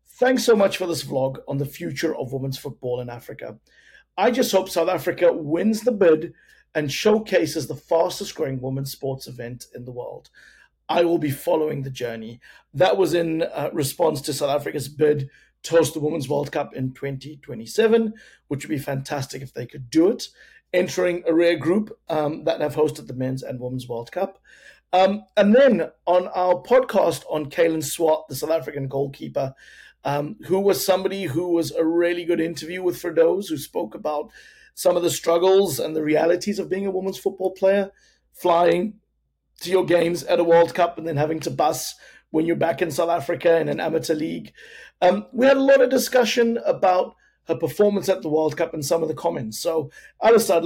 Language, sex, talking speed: English, male, 195 wpm